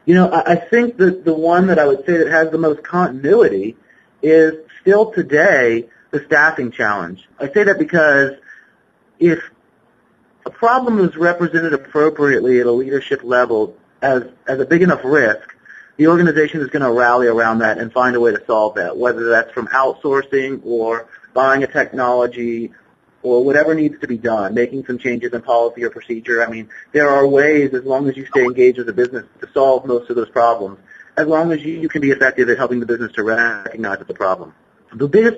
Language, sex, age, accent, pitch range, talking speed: English, male, 40-59, American, 120-160 Hz, 195 wpm